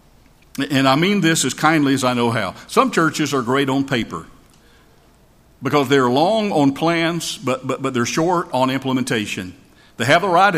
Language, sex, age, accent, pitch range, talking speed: English, male, 50-69, American, 120-155 Hz, 180 wpm